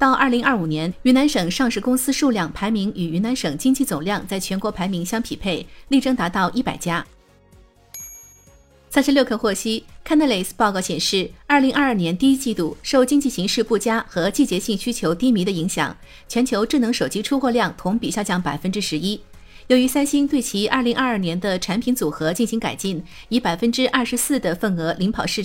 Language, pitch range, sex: Chinese, 185-255 Hz, female